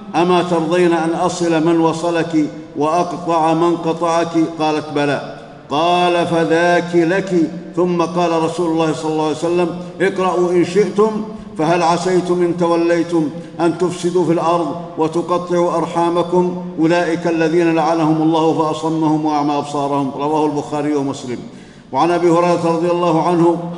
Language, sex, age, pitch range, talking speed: Arabic, male, 50-69, 165-180 Hz, 130 wpm